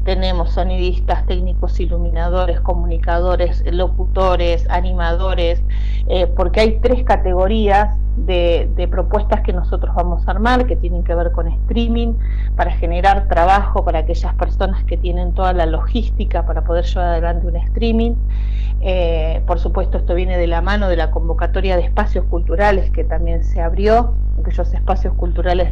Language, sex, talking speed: Spanish, female, 150 wpm